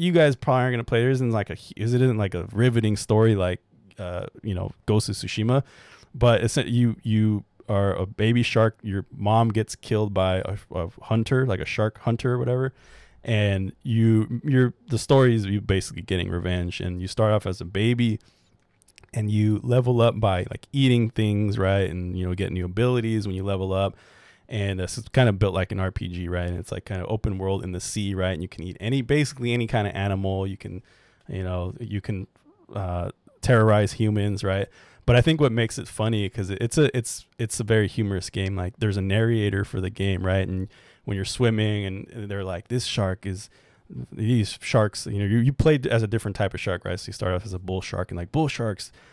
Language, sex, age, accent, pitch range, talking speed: English, male, 20-39, American, 95-120 Hz, 225 wpm